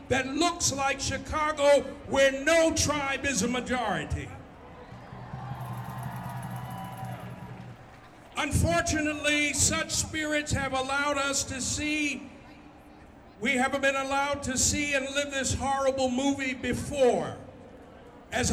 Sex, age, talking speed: male, 50-69, 100 wpm